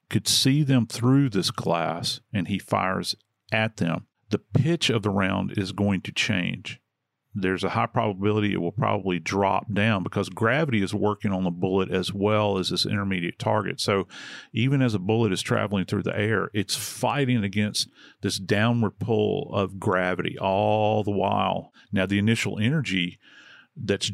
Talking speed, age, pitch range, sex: 170 wpm, 40-59, 95-115 Hz, male